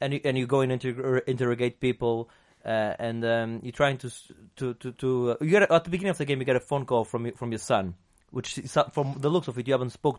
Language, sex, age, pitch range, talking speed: English, male, 30-49, 110-135 Hz, 285 wpm